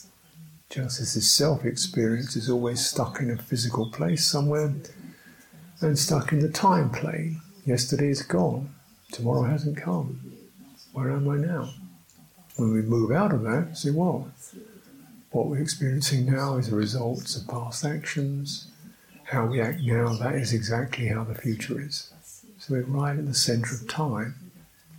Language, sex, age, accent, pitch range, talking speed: English, male, 50-69, British, 120-160 Hz, 155 wpm